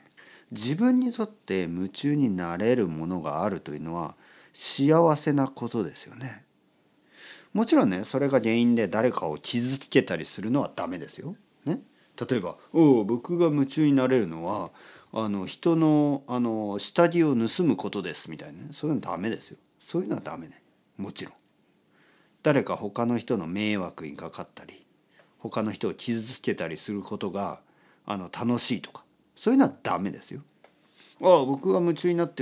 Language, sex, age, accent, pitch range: Japanese, male, 50-69, native, 110-165 Hz